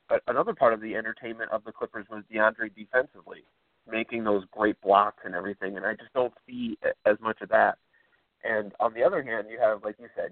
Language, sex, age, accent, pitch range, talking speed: English, male, 30-49, American, 110-130 Hz, 215 wpm